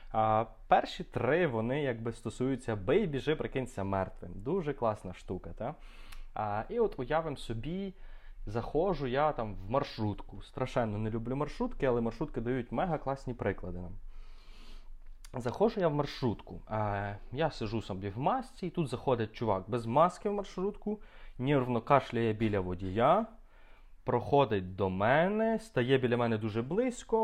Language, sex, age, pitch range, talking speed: Ukrainian, male, 20-39, 105-150 Hz, 140 wpm